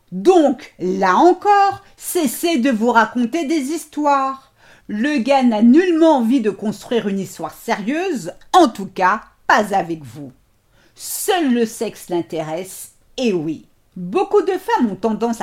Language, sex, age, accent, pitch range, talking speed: French, female, 50-69, French, 210-310 Hz, 140 wpm